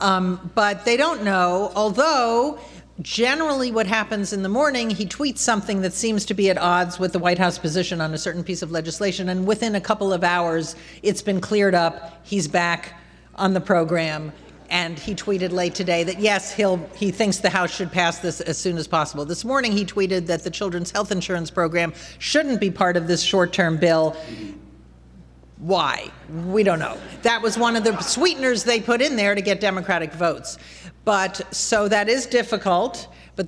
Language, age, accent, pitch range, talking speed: English, 50-69, American, 175-220 Hz, 190 wpm